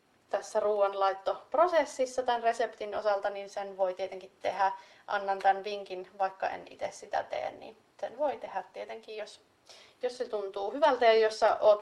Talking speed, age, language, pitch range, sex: 155 wpm, 30-49, Finnish, 195-260 Hz, female